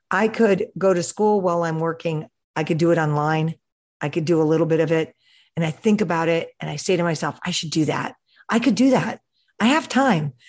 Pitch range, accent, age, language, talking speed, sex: 165-215 Hz, American, 50-69, English, 240 wpm, female